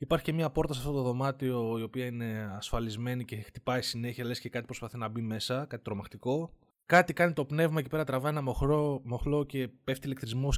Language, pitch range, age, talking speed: Greek, 120-155 Hz, 20-39, 200 wpm